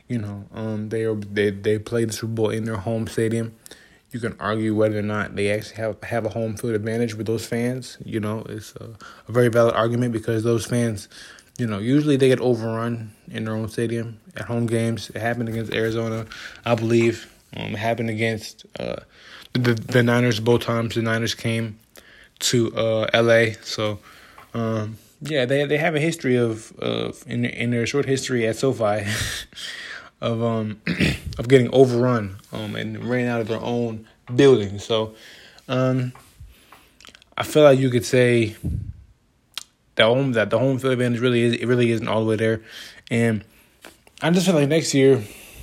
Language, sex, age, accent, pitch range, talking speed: English, male, 20-39, American, 110-120 Hz, 185 wpm